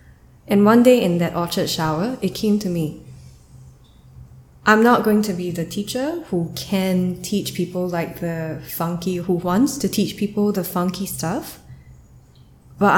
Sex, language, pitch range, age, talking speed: female, English, 160-195 Hz, 10-29, 155 wpm